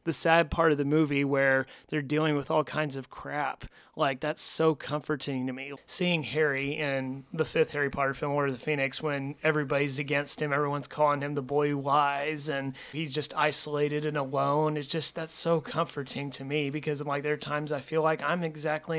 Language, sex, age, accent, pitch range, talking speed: English, male, 30-49, American, 140-155 Hz, 210 wpm